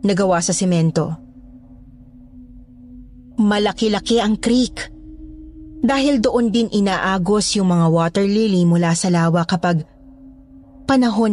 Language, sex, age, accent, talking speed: Filipino, female, 20-39, native, 100 wpm